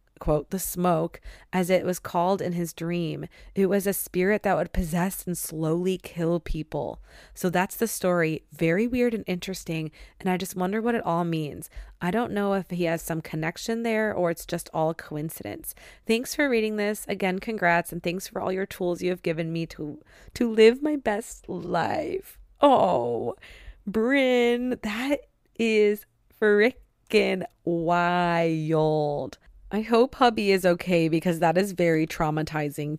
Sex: female